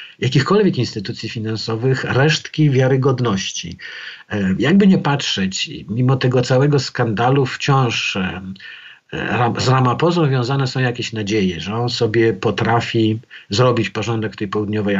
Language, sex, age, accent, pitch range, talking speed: Polish, male, 50-69, native, 110-140 Hz, 125 wpm